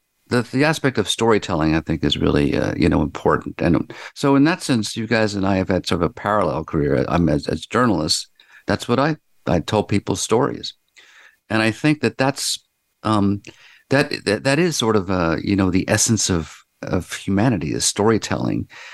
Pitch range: 90-125 Hz